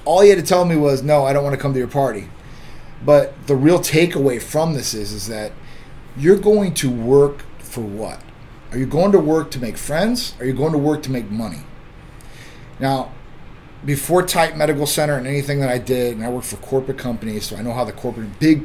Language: English